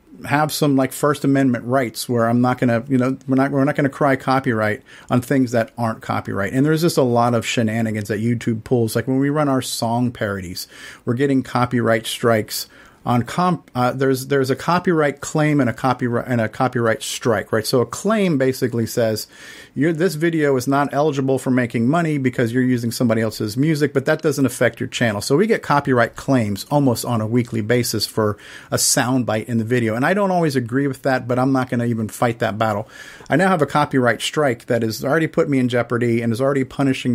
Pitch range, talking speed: 115-140 Hz, 225 wpm